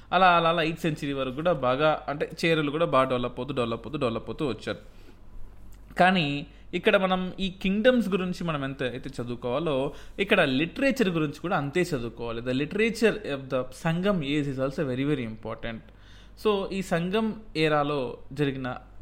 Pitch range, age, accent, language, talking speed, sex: 125-170 Hz, 20-39, native, Telugu, 160 wpm, male